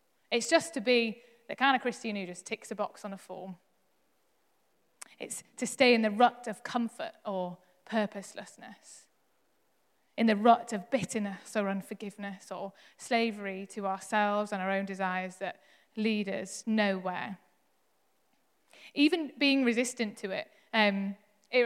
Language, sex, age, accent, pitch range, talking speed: English, female, 20-39, British, 195-235 Hz, 145 wpm